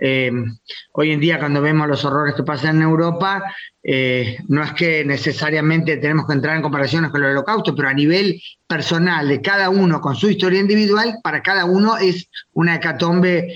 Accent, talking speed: Argentinian, 185 wpm